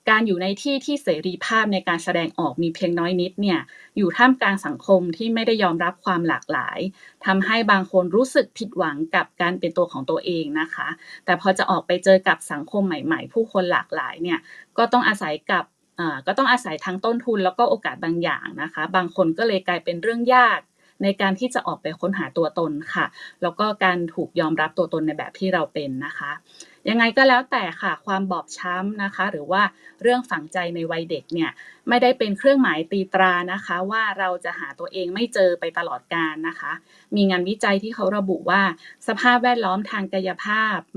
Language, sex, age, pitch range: Thai, female, 20-39, 175-220 Hz